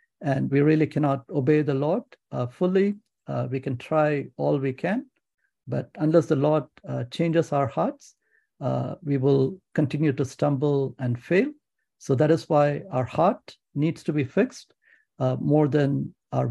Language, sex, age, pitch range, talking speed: English, male, 60-79, 135-170 Hz, 165 wpm